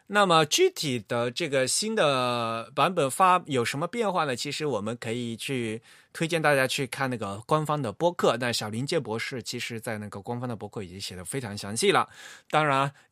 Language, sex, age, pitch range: Chinese, male, 20-39, 110-160 Hz